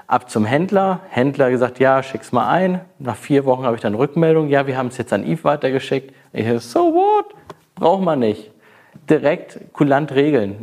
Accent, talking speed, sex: German, 190 wpm, male